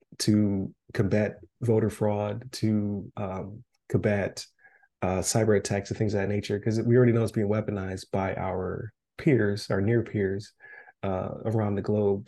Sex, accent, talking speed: male, American, 155 wpm